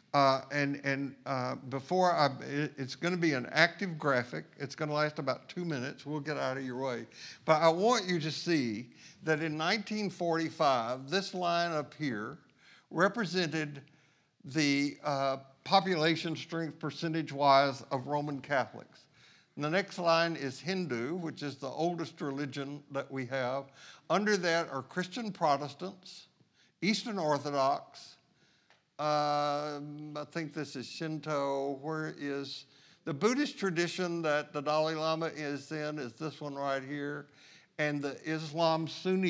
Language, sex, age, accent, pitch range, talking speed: English, male, 60-79, American, 140-165 Hz, 145 wpm